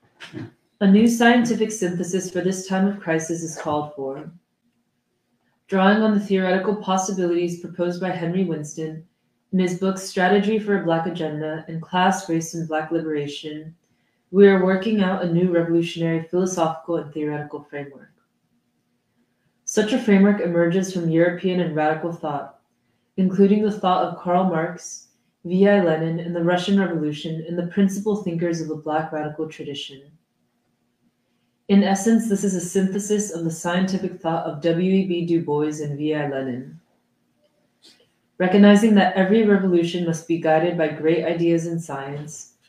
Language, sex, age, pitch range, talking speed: English, female, 20-39, 160-195 Hz, 150 wpm